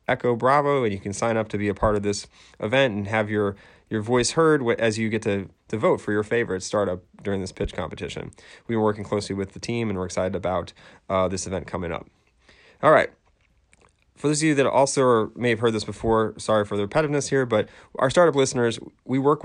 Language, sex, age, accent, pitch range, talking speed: English, male, 30-49, American, 95-115 Hz, 230 wpm